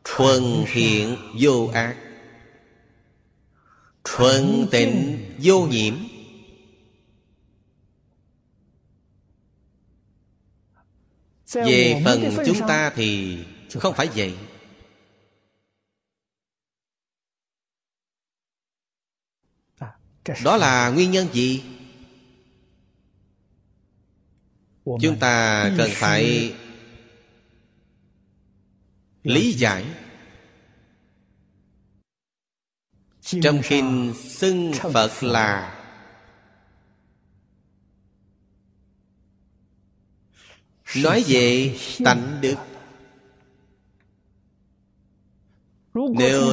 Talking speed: 50 wpm